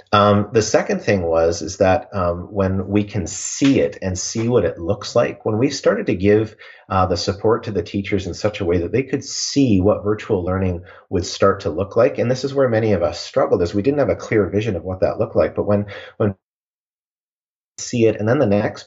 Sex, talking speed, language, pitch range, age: male, 240 wpm, English, 95-115 Hz, 30-49